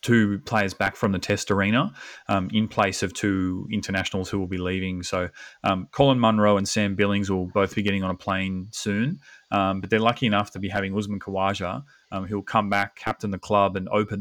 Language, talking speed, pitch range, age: English, 220 wpm, 95-110 Hz, 30-49